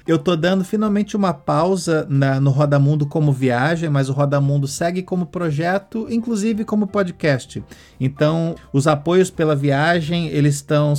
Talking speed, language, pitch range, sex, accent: 155 wpm, Portuguese, 145-185 Hz, male, Brazilian